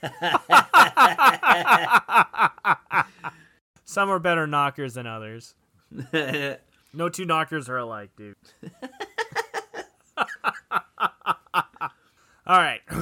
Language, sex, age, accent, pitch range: English, male, 20-39, American, 130-195 Hz